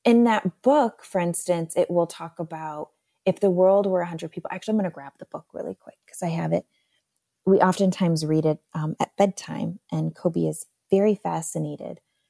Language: English